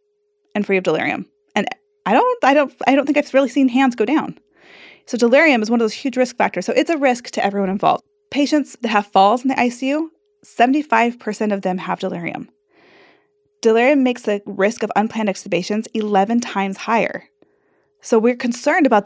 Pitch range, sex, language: 195-270 Hz, female, English